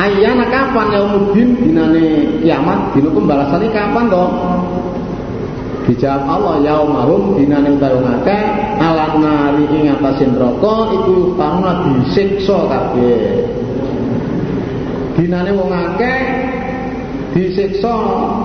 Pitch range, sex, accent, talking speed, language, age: 145-205 Hz, male, native, 90 wpm, Indonesian, 50-69